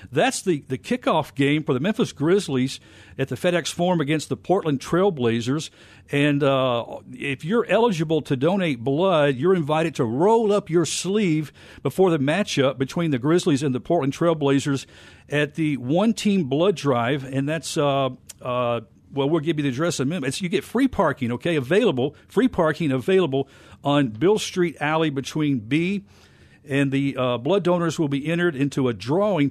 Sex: male